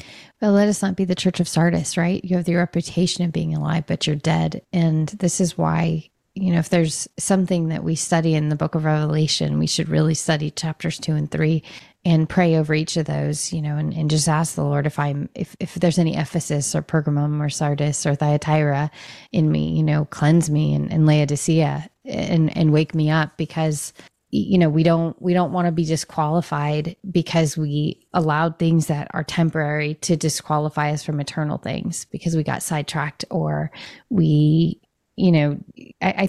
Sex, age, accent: female, 30-49, American